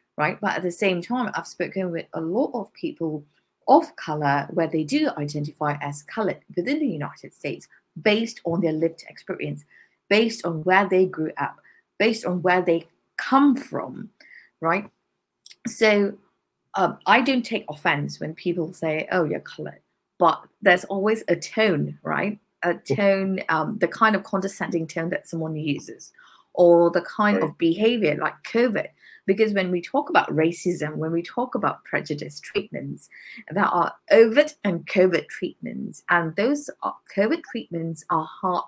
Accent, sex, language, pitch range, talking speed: British, female, English, 165-220 Hz, 160 wpm